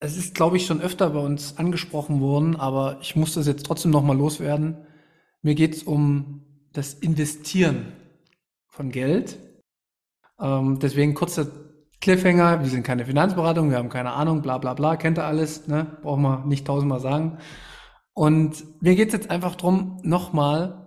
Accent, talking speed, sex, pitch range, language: German, 165 wpm, male, 145-185 Hz, German